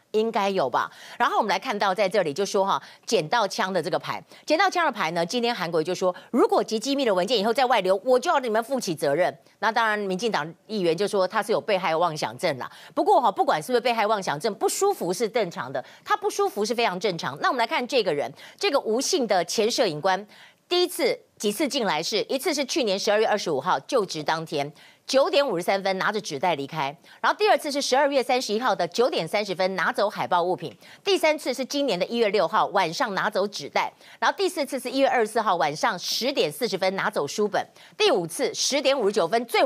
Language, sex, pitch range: Chinese, female, 185-280 Hz